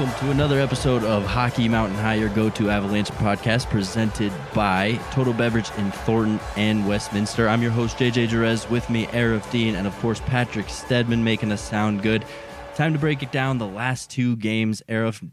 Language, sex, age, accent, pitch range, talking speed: English, male, 20-39, American, 105-130 Hz, 190 wpm